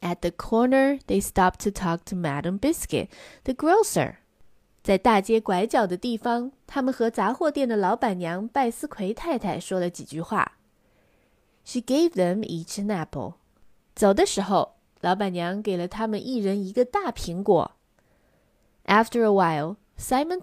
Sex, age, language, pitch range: female, 20-39, Chinese, 180-255 Hz